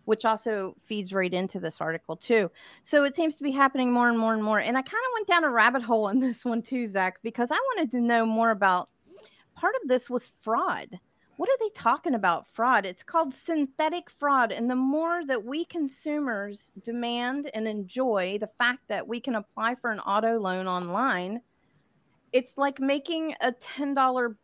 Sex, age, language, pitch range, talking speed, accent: female, 40-59, English, 195-260 Hz, 195 wpm, American